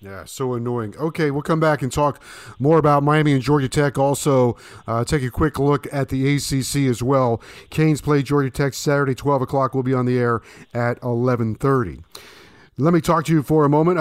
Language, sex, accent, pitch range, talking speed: English, male, American, 130-160 Hz, 205 wpm